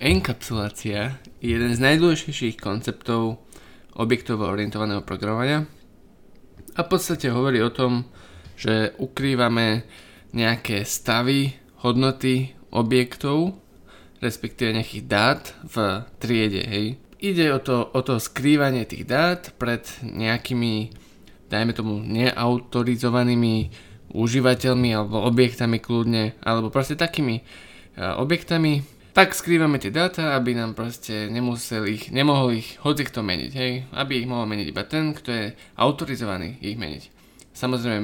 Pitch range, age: 110-130 Hz, 20-39